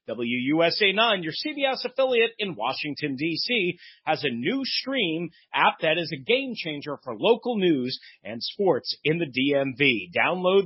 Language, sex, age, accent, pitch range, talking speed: English, male, 40-59, American, 145-215 Hz, 145 wpm